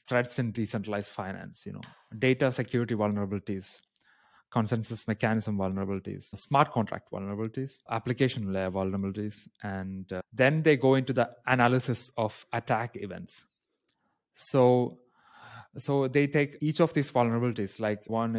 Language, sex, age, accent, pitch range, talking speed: English, male, 20-39, Indian, 110-130 Hz, 125 wpm